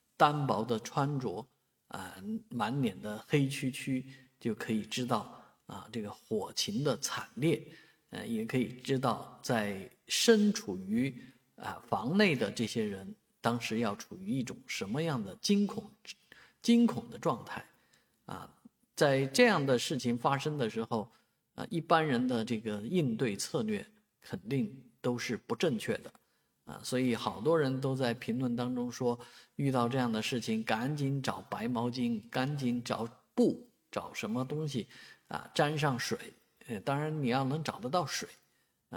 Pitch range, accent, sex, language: 120-150 Hz, native, male, Chinese